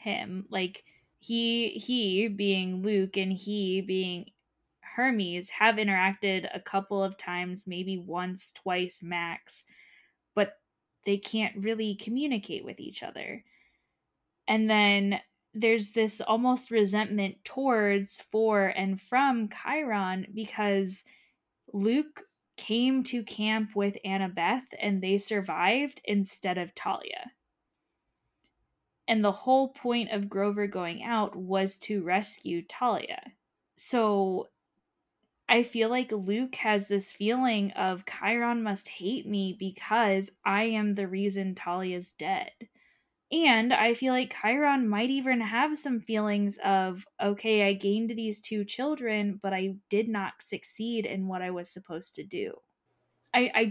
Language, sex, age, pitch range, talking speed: English, female, 10-29, 195-235 Hz, 130 wpm